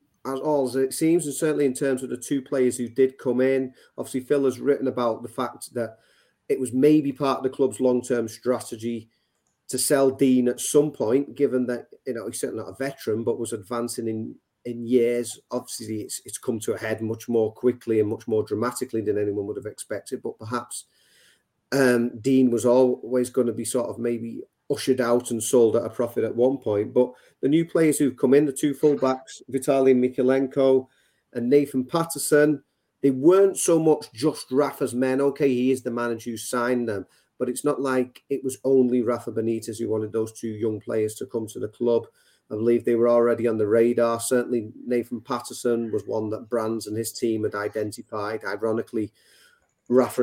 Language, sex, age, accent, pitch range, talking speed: English, male, 40-59, British, 115-135 Hz, 200 wpm